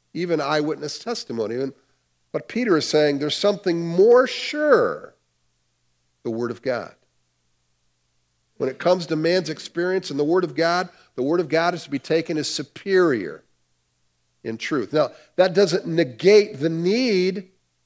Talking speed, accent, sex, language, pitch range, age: 150 wpm, American, male, English, 125-175 Hz, 50-69